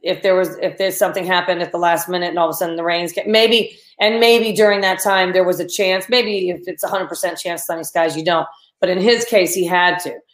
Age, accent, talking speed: 40-59, American, 275 wpm